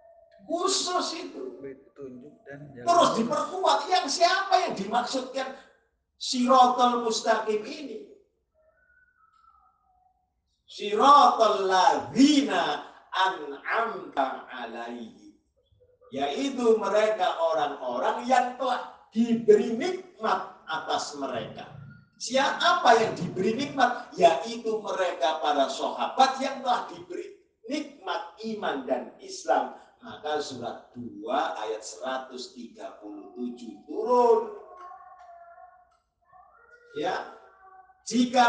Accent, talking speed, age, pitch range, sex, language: native, 75 wpm, 50-69, 210-335 Hz, male, Indonesian